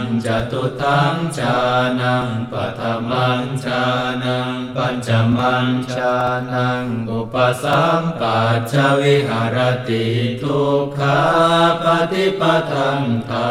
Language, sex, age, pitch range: Thai, male, 60-79, 125-140 Hz